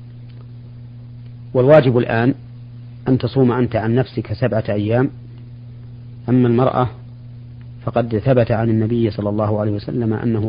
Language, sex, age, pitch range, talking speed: Arabic, male, 40-59, 115-120 Hz, 115 wpm